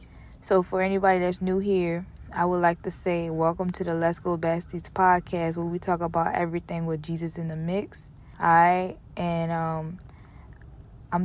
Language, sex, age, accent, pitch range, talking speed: English, female, 20-39, American, 160-180 Hz, 175 wpm